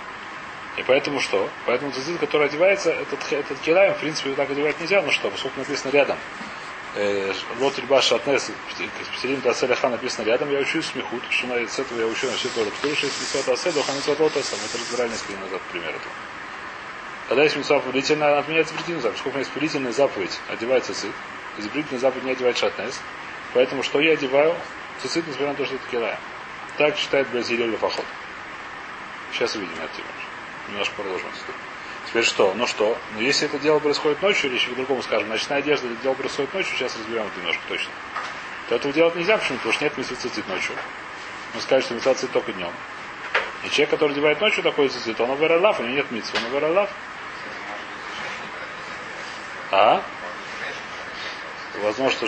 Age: 30-49